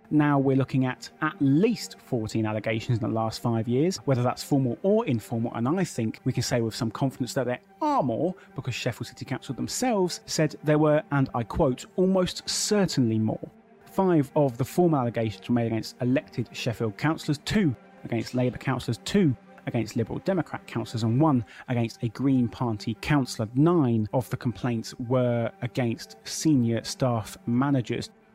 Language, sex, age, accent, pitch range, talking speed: English, male, 30-49, British, 115-150 Hz, 170 wpm